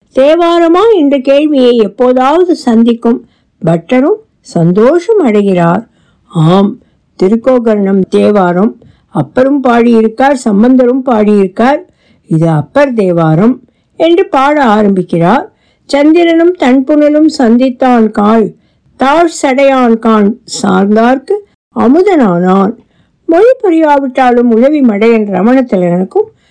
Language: Tamil